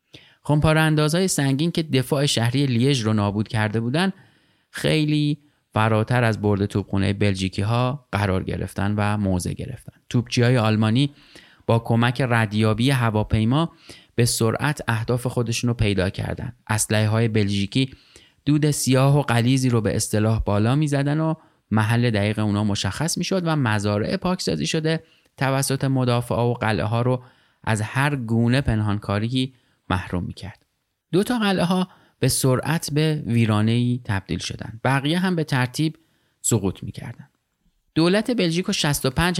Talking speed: 135 wpm